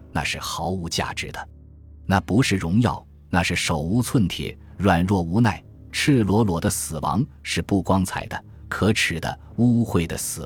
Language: Chinese